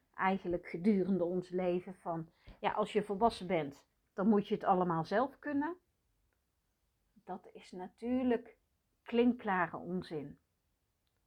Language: Dutch